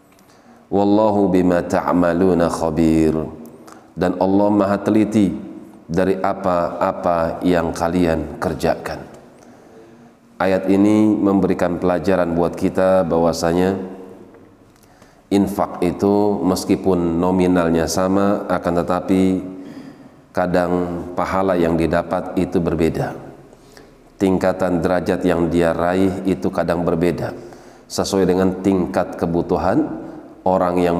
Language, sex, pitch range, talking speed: Indonesian, male, 85-95 Hz, 90 wpm